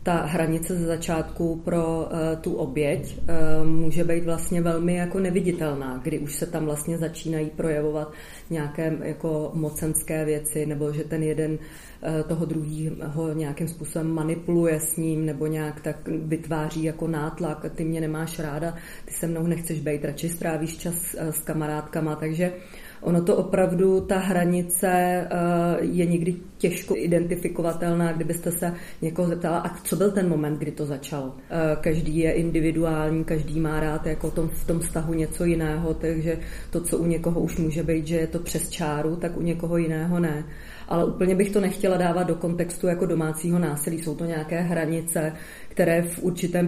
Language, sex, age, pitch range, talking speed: Czech, female, 30-49, 155-175 Hz, 160 wpm